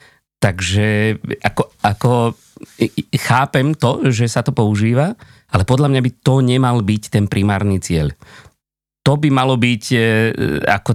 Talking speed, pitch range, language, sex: 130 wpm, 100-130 Hz, Slovak, male